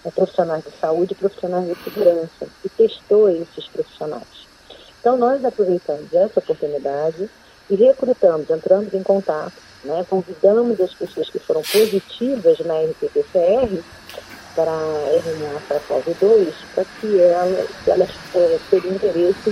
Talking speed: 140 wpm